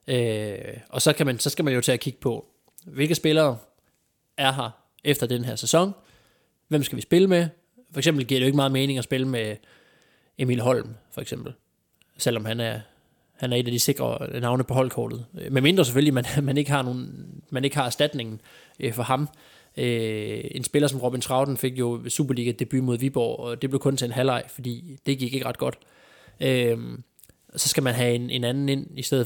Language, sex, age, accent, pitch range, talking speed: Danish, male, 20-39, native, 120-140 Hz, 210 wpm